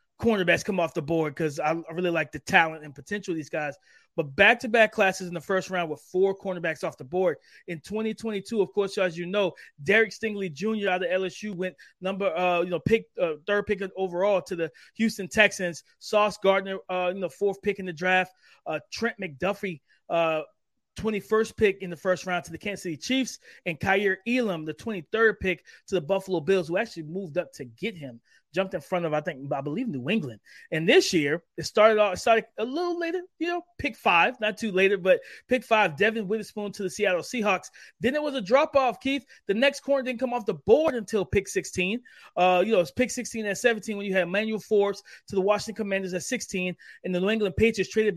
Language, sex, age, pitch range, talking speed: English, male, 30-49, 180-220 Hz, 220 wpm